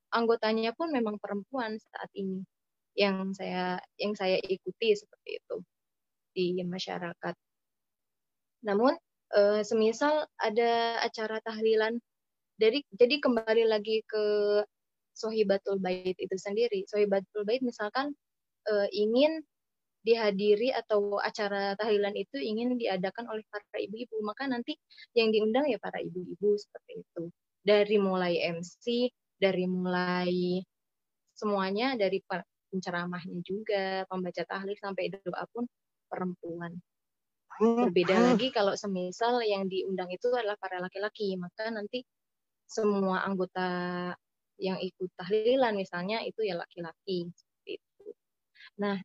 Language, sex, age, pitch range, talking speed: Indonesian, female, 20-39, 190-235 Hz, 110 wpm